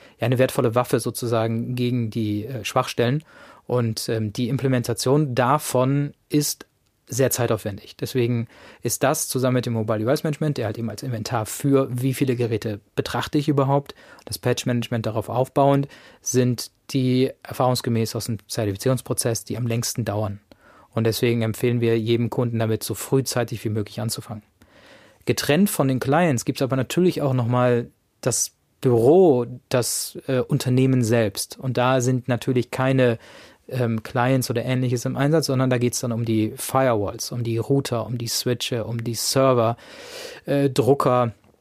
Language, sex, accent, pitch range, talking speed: German, male, German, 115-135 Hz, 155 wpm